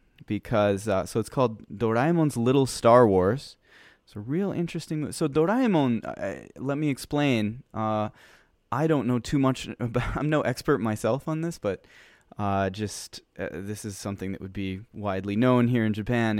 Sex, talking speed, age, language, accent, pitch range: male, 170 wpm, 20-39, English, American, 100-130 Hz